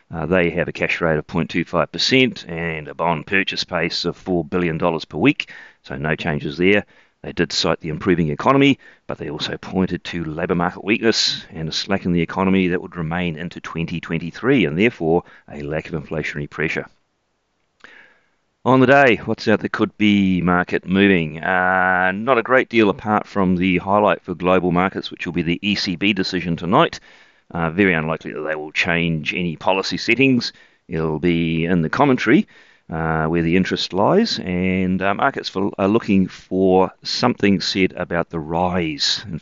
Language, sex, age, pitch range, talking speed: English, male, 40-59, 80-95 Hz, 180 wpm